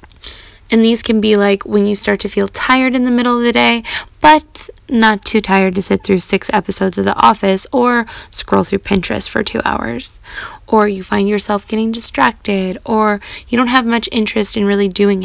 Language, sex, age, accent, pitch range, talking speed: English, female, 10-29, American, 200-255 Hz, 200 wpm